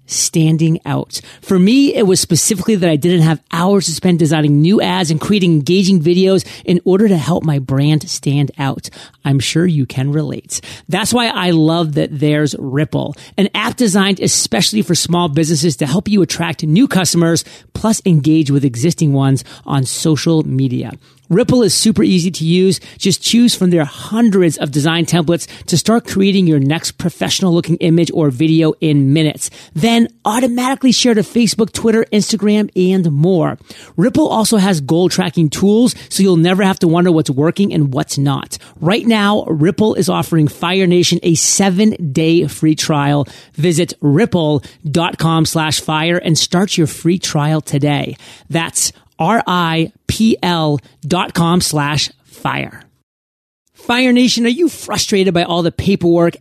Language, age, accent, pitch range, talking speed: English, 40-59, American, 155-195 Hz, 160 wpm